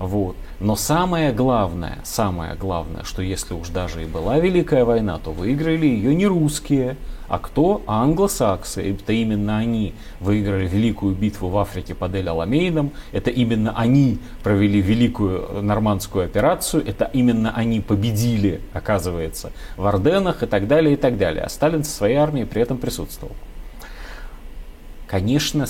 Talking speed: 145 wpm